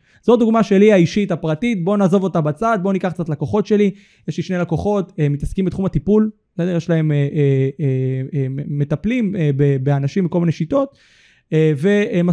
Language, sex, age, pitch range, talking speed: Hebrew, male, 20-39, 145-195 Hz, 165 wpm